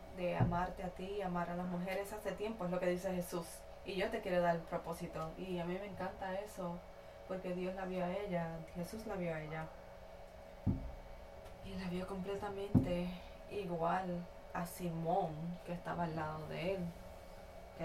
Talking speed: 180 wpm